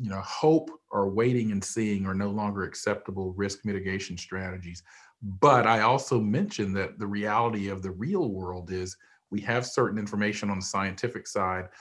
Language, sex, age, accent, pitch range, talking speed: English, male, 40-59, American, 100-125 Hz, 175 wpm